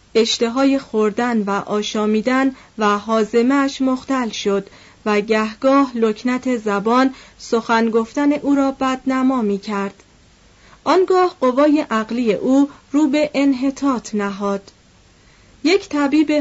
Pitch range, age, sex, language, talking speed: 220-275 Hz, 40-59, female, Persian, 100 wpm